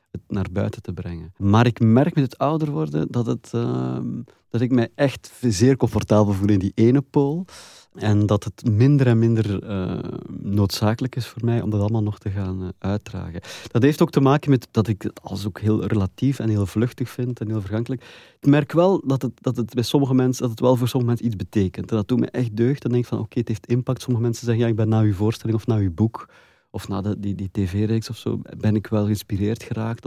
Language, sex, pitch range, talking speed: Dutch, male, 105-125 Hz, 245 wpm